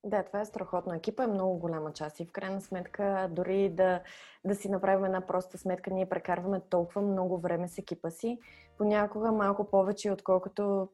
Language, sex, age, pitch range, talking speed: Bulgarian, female, 20-39, 180-220 Hz, 180 wpm